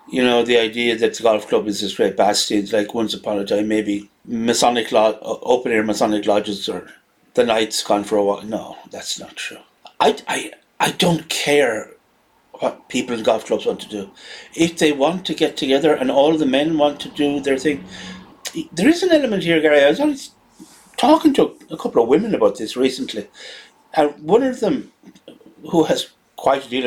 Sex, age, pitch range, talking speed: male, 60-79, 125-190 Hz, 190 wpm